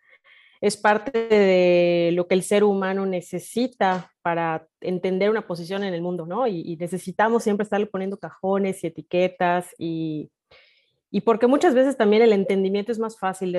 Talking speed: 170 wpm